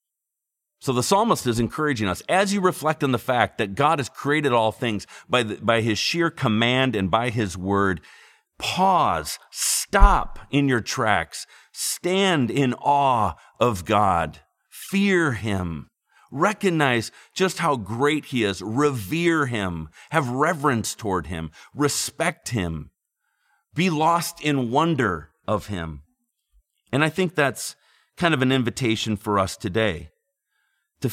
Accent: American